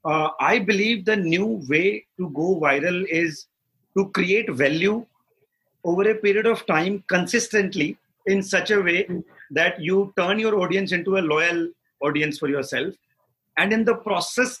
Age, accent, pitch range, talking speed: 40-59, Indian, 160-205 Hz, 155 wpm